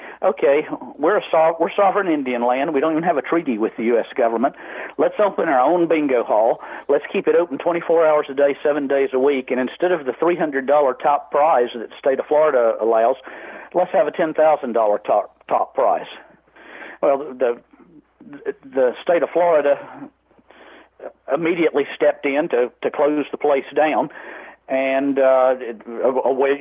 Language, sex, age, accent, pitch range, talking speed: English, male, 50-69, American, 135-170 Hz, 165 wpm